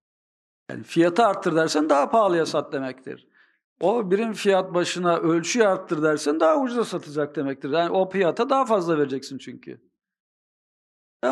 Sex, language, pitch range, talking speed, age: male, Turkish, 145-205 Hz, 145 wpm, 50-69